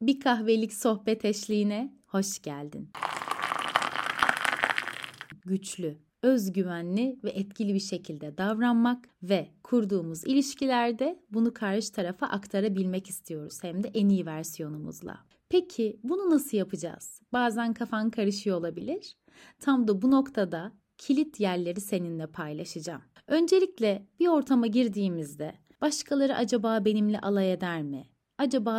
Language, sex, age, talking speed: Turkish, female, 30-49, 110 wpm